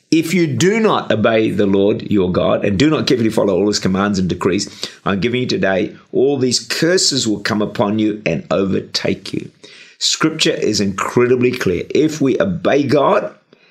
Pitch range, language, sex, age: 105-130 Hz, English, male, 50-69